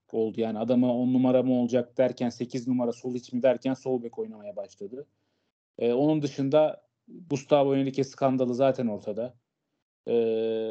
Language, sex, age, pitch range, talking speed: Turkish, male, 30-49, 130-155 Hz, 145 wpm